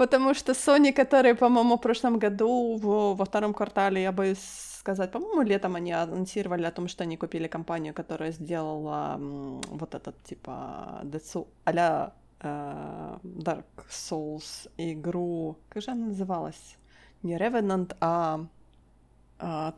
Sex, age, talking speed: female, 20-39, 135 wpm